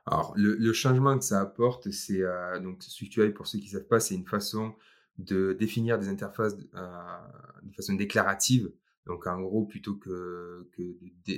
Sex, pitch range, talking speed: male, 95-115 Hz, 185 wpm